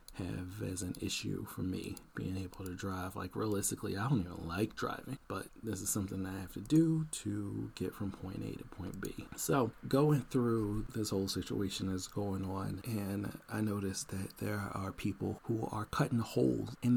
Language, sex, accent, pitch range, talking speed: English, male, American, 100-120 Hz, 195 wpm